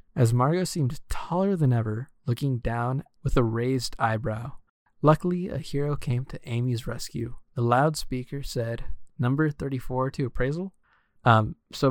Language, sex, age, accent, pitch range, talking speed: English, male, 20-39, American, 115-135 Hz, 140 wpm